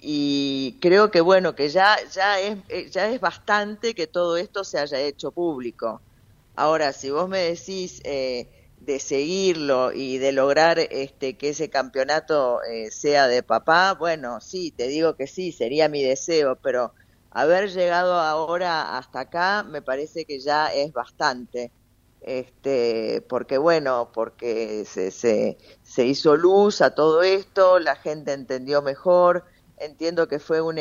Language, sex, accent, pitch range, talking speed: Spanish, female, Argentinian, 135-170 Hz, 150 wpm